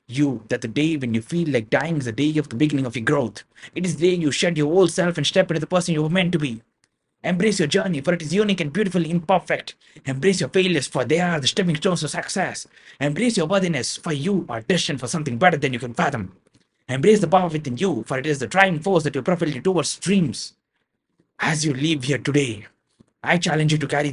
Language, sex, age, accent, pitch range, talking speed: English, male, 20-39, Indian, 120-165 Hz, 240 wpm